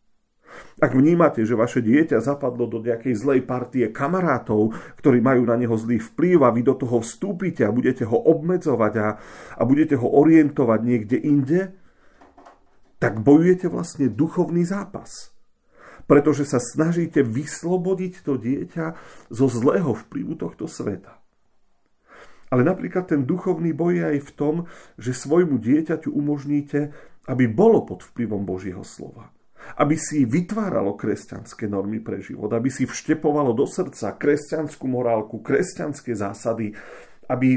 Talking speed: 135 wpm